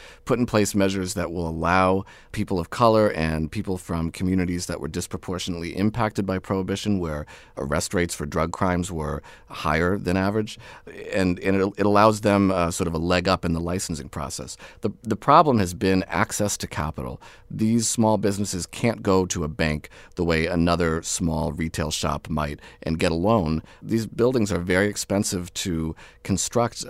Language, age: English, 40-59